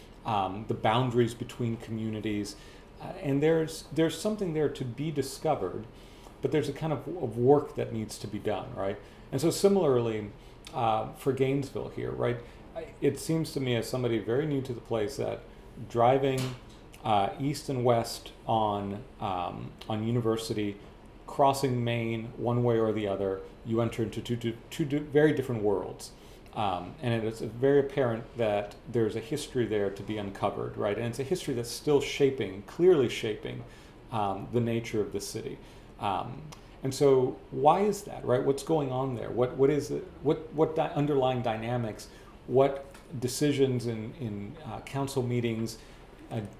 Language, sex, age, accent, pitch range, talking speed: English, male, 40-59, American, 110-140 Hz, 165 wpm